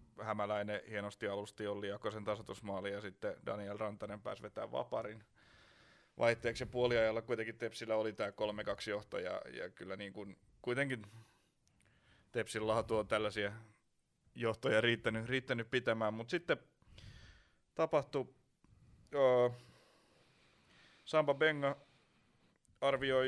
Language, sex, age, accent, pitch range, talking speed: Finnish, male, 30-49, native, 105-125 Hz, 105 wpm